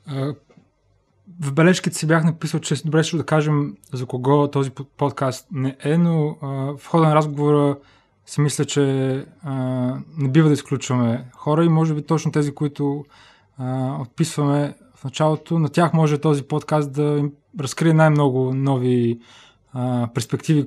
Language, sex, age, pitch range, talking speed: Bulgarian, male, 20-39, 130-150 Hz, 140 wpm